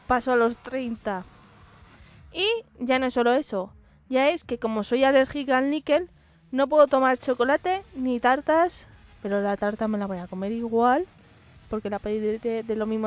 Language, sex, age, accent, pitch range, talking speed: Spanish, female, 20-39, Spanish, 210-270 Hz, 180 wpm